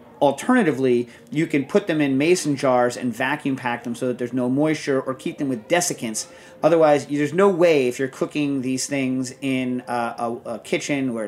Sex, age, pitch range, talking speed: male, 40-59, 125-145 Hz, 190 wpm